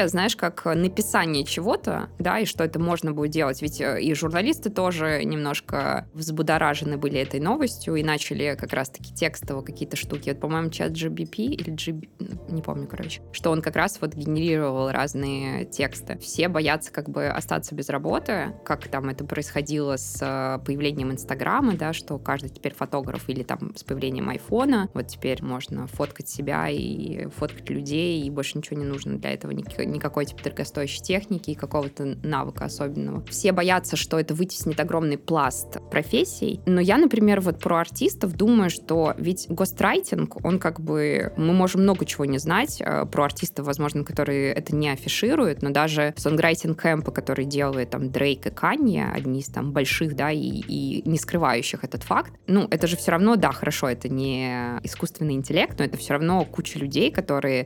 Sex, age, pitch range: female, 20-39, 140-170 Hz